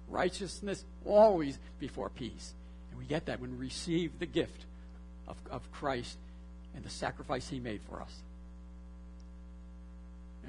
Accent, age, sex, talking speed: American, 60-79, male, 135 wpm